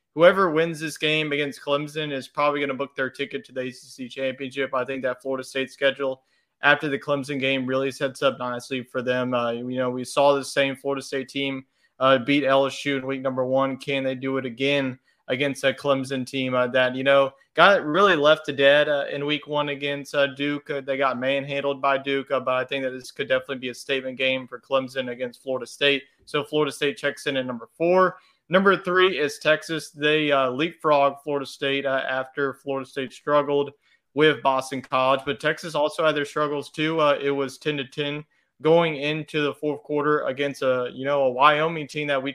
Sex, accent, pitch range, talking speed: male, American, 135-145 Hz, 215 wpm